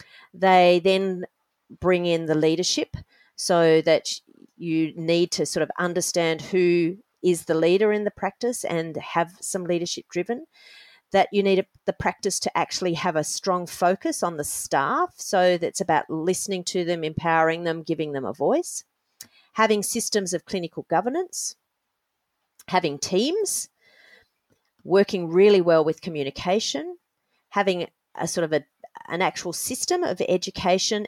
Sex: female